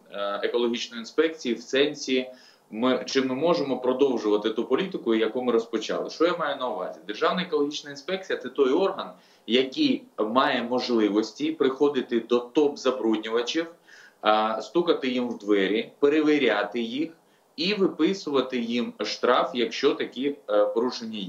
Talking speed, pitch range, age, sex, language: 125 wpm, 120-160 Hz, 20-39, male, Ukrainian